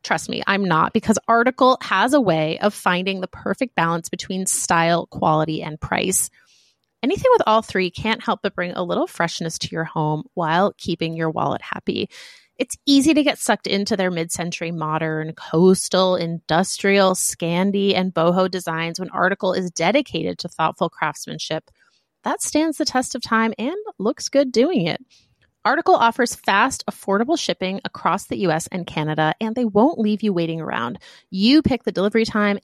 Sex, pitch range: female, 175-235 Hz